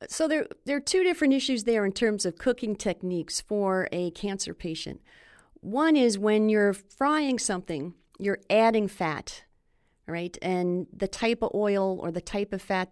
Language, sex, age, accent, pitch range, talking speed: English, female, 40-59, American, 175-225 Hz, 170 wpm